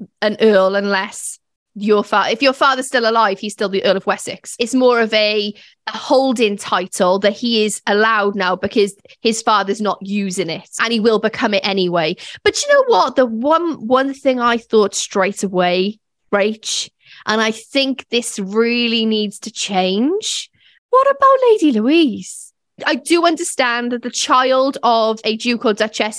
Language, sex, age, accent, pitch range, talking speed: English, female, 10-29, British, 210-275 Hz, 175 wpm